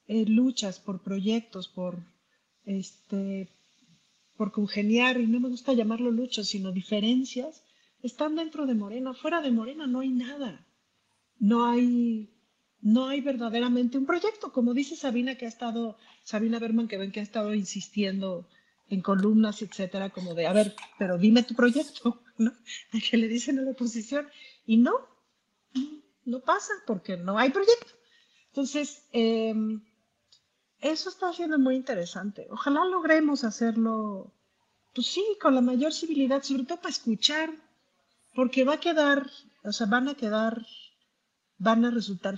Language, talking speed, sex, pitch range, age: Spanish, 150 wpm, female, 210-265 Hz, 40-59